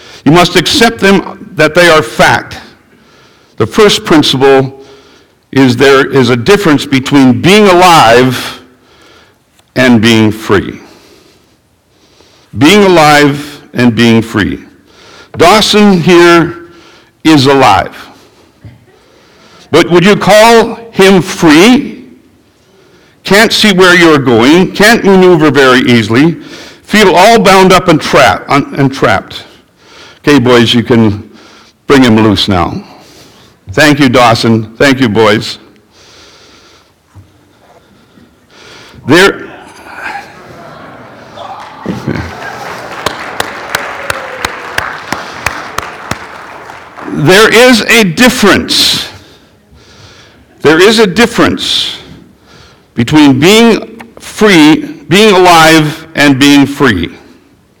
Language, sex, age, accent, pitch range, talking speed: English, male, 60-79, American, 125-195 Hz, 85 wpm